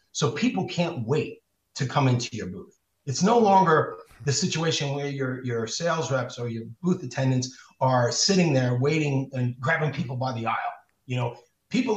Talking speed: 180 wpm